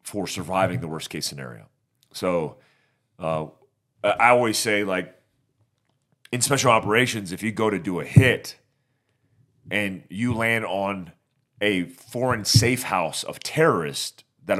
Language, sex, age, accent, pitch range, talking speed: English, male, 40-59, American, 95-125 Hz, 135 wpm